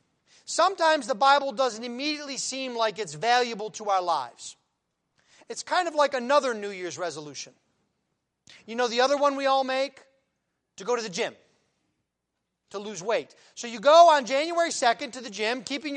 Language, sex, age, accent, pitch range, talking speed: English, male, 30-49, American, 230-300 Hz, 175 wpm